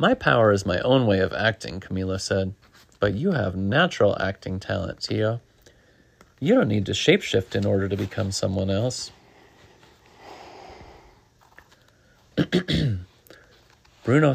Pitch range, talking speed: 100-135 Hz, 120 wpm